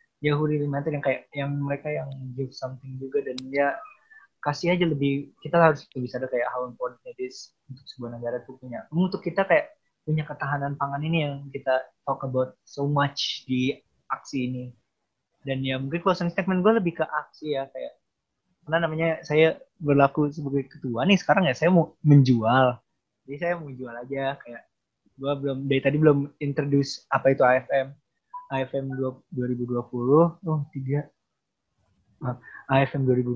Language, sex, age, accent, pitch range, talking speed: Indonesian, male, 20-39, native, 130-155 Hz, 145 wpm